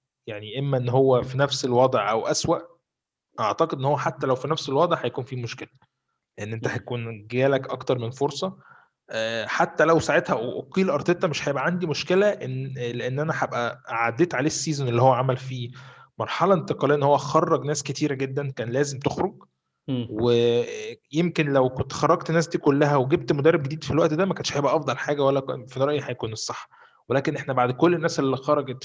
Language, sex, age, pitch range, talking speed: Arabic, male, 20-39, 125-155 Hz, 185 wpm